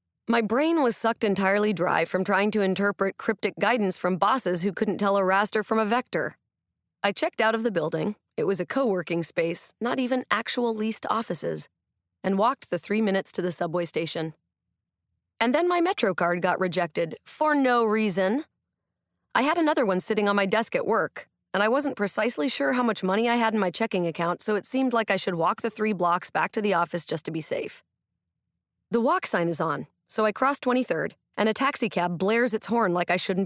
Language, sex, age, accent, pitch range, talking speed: English, female, 30-49, American, 180-235 Hz, 210 wpm